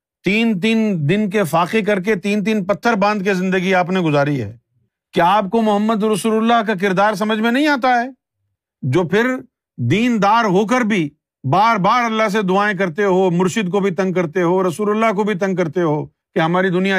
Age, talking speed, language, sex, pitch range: 50-69, 210 wpm, Urdu, male, 170-235 Hz